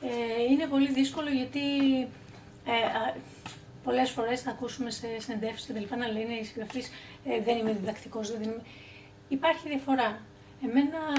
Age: 30-49